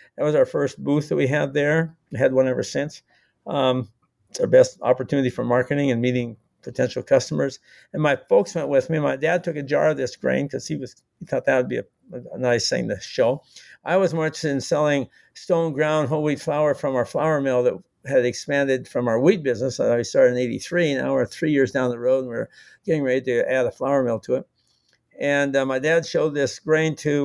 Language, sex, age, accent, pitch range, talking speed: English, male, 60-79, American, 130-160 Hz, 230 wpm